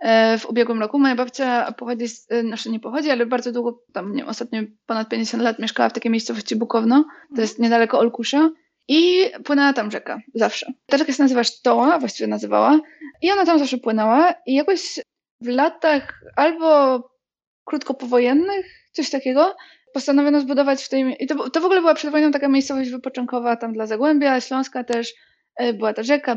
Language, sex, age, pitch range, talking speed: Polish, female, 20-39, 235-290 Hz, 170 wpm